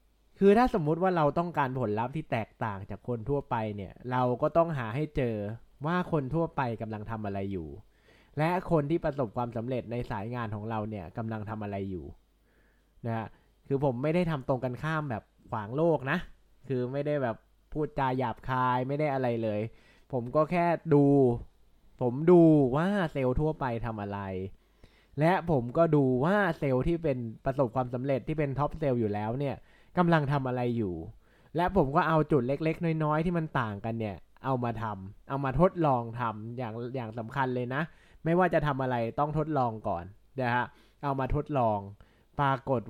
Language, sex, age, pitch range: Thai, male, 20-39, 115-155 Hz